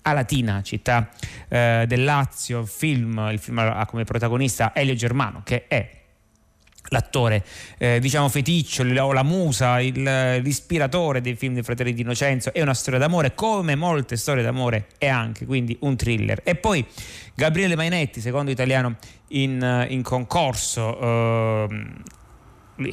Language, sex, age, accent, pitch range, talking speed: Italian, male, 30-49, native, 115-135 Hz, 140 wpm